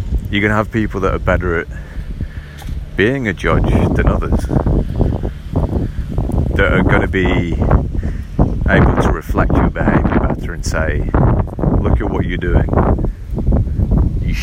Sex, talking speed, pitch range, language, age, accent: male, 135 wpm, 80-95 Hz, English, 40-59, British